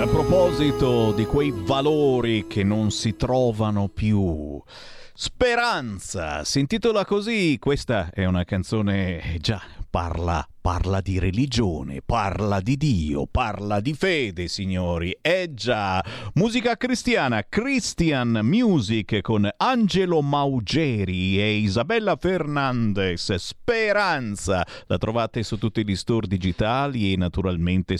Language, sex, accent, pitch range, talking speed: Italian, male, native, 100-160 Hz, 110 wpm